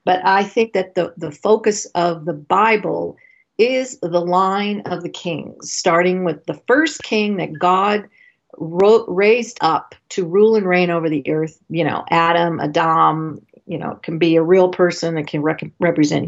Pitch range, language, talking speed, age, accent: 170-215 Hz, English, 170 wpm, 50-69, American